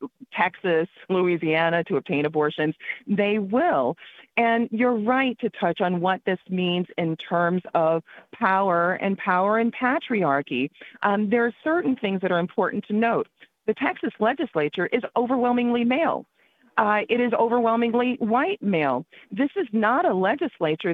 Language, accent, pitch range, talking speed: English, American, 175-240 Hz, 145 wpm